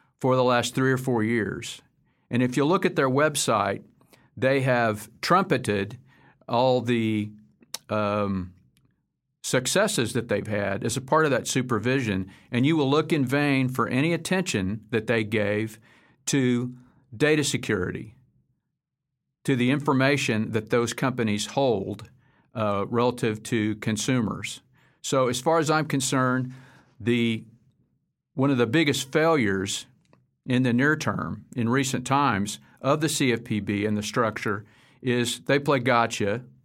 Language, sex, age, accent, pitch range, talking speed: English, male, 50-69, American, 110-135 Hz, 140 wpm